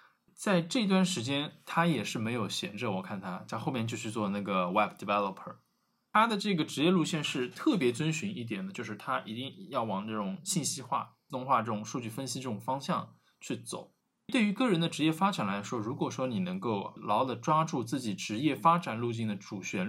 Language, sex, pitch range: Chinese, male, 110-180 Hz